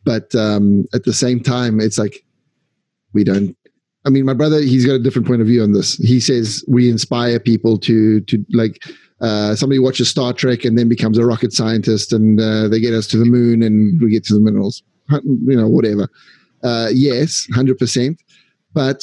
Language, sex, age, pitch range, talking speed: Italian, male, 30-49, 110-125 Hz, 205 wpm